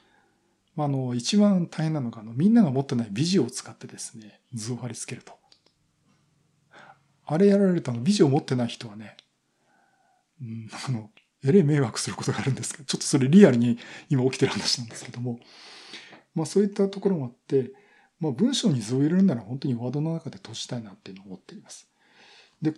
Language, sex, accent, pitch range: Japanese, male, native, 120-180 Hz